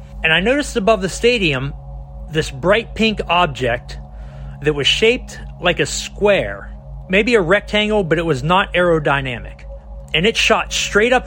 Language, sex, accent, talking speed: English, male, American, 155 wpm